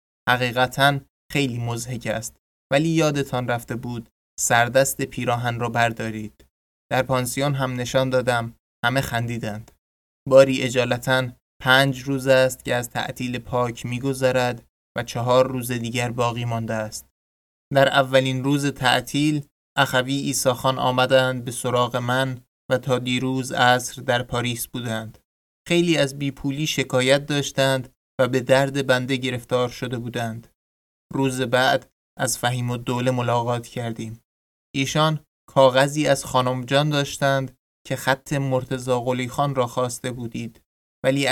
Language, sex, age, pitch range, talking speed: Persian, male, 20-39, 120-135 Hz, 130 wpm